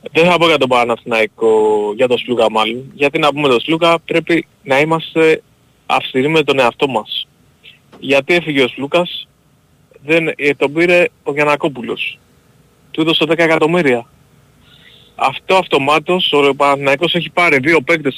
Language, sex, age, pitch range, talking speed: Greek, male, 30-49, 135-170 Hz, 145 wpm